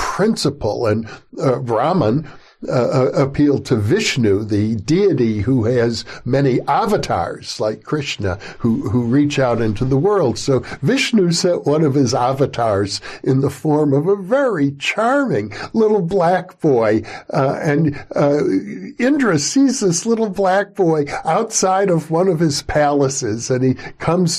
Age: 60-79